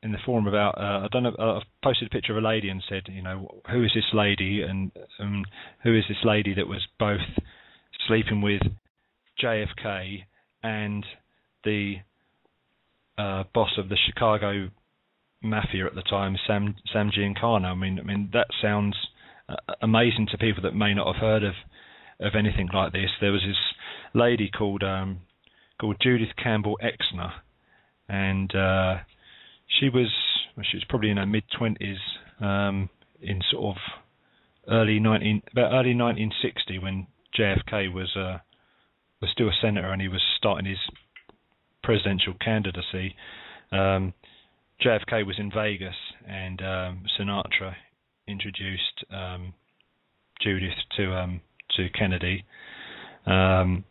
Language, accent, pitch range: English, British, 95-110 Hz